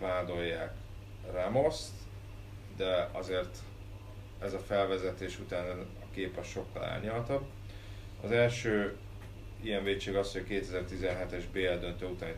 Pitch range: 95-100 Hz